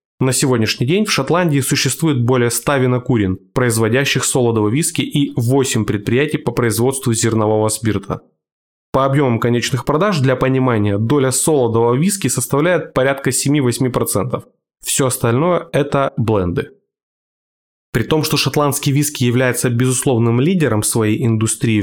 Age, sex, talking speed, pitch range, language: 20-39, male, 125 wpm, 115-145 Hz, Russian